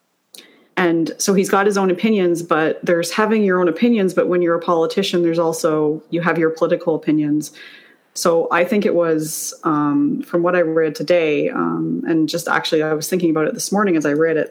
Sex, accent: female, American